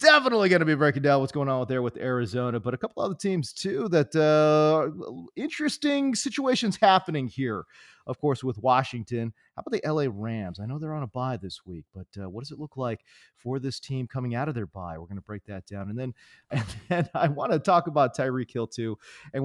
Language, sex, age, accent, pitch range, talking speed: English, male, 30-49, American, 120-165 Hz, 235 wpm